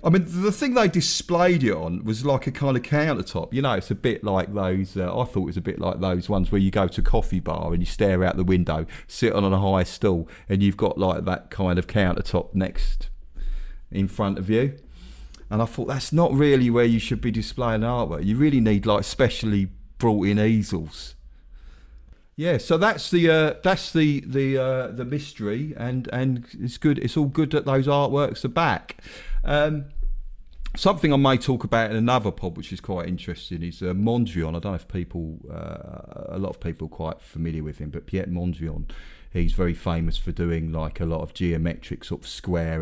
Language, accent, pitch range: English, British, 85-120 Hz